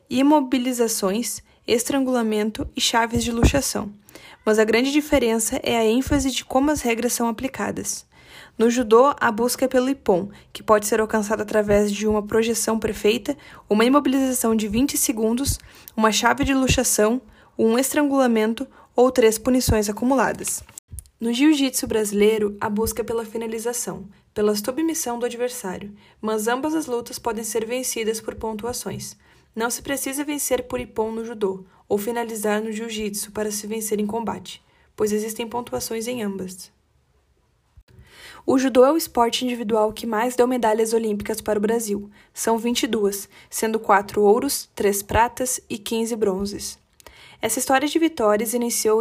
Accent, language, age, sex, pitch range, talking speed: Brazilian, Portuguese, 20-39, female, 215-250 Hz, 150 wpm